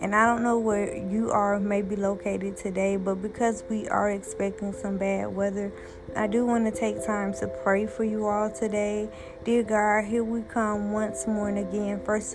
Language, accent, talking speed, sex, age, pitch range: English, American, 195 wpm, female, 20-39, 200-225 Hz